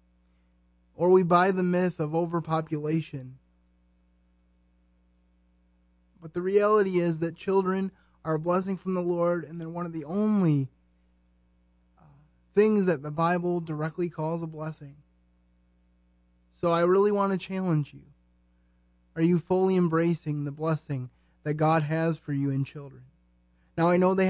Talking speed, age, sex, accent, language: 145 wpm, 20-39, male, American, English